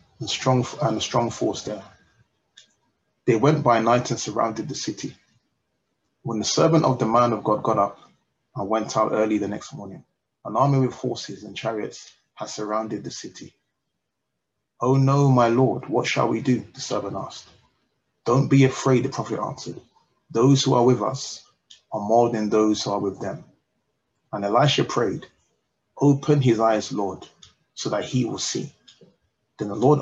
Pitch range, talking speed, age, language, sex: 110-130 Hz, 170 wpm, 30-49, English, male